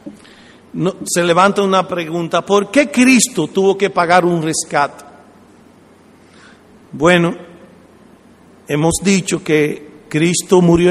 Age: 50-69